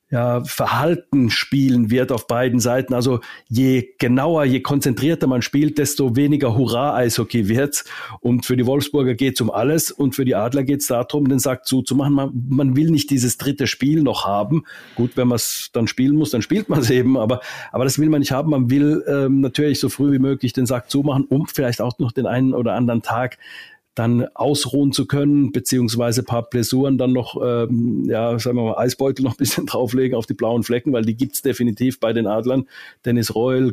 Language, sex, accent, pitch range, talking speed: German, male, German, 120-140 Hz, 210 wpm